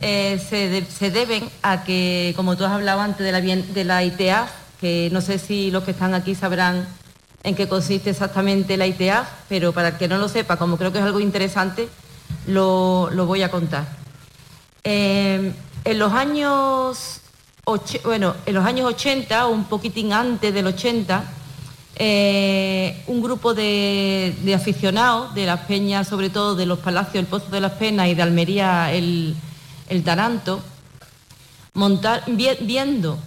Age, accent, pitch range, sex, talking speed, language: 40-59, Spanish, 180-220 Hz, female, 165 wpm, Spanish